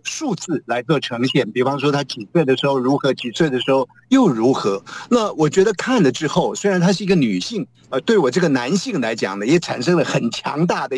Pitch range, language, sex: 140-205 Hz, Chinese, male